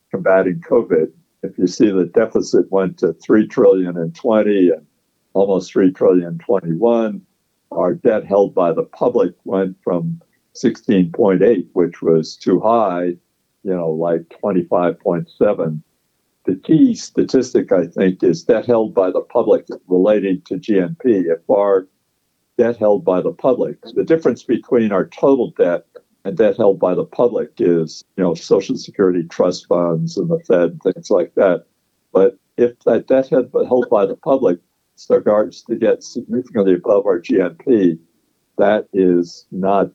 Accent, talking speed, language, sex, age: American, 150 wpm, English, male, 60-79